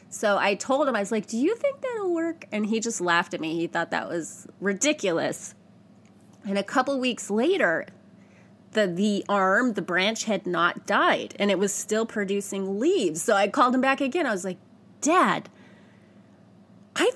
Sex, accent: female, American